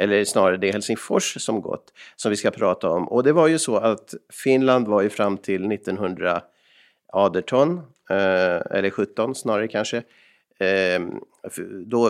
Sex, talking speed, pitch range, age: male, 145 wpm, 105-135 Hz, 50-69